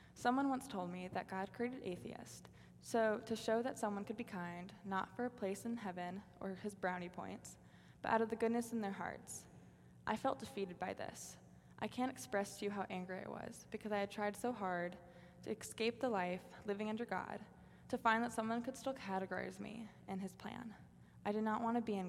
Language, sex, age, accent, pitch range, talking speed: English, female, 20-39, American, 185-230 Hz, 215 wpm